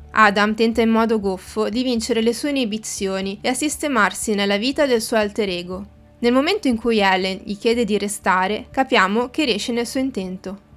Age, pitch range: 20-39, 200-245 Hz